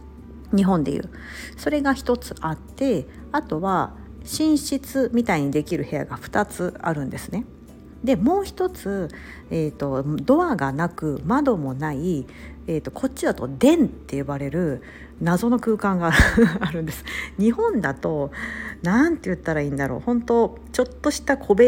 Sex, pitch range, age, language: female, 145-240 Hz, 50-69, Japanese